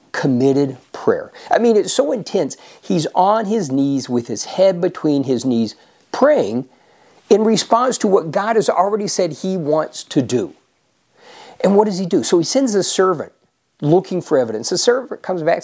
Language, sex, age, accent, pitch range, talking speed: English, male, 50-69, American, 145-225 Hz, 180 wpm